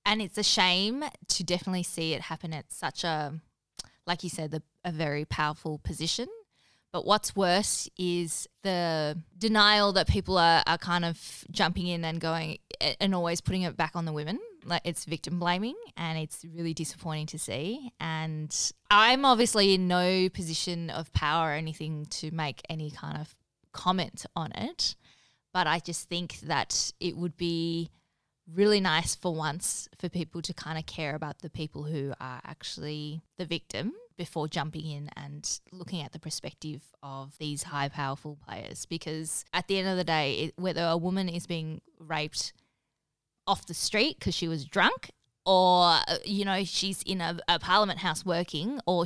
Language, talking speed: English, 175 wpm